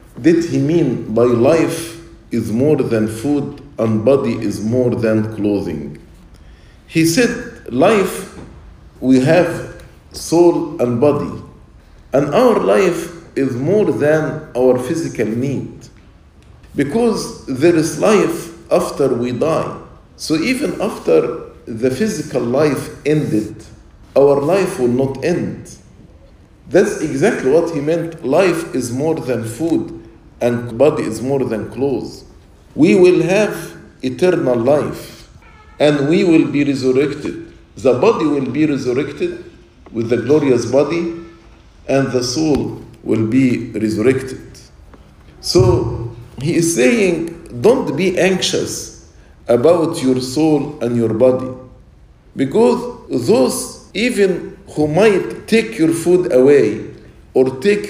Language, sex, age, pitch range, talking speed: English, male, 50-69, 120-165 Hz, 120 wpm